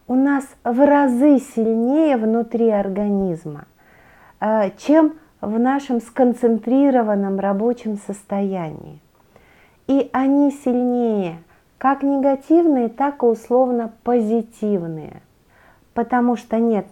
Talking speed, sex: 90 wpm, female